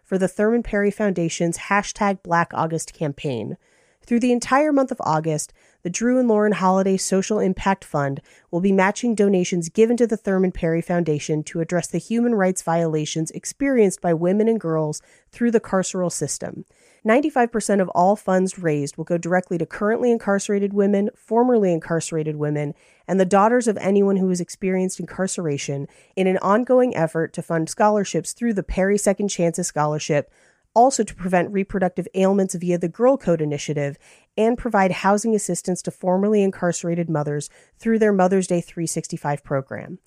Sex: female